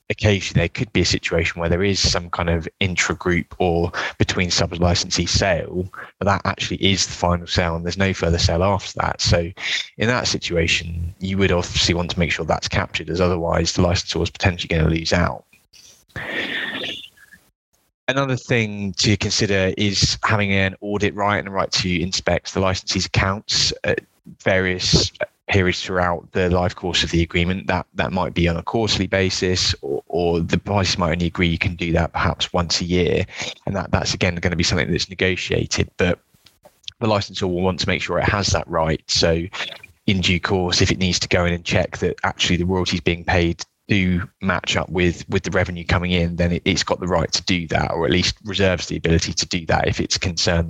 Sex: male